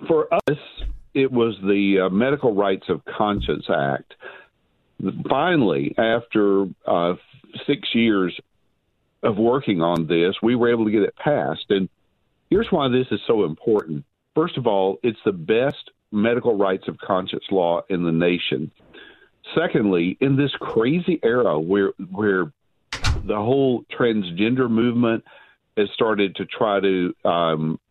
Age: 50-69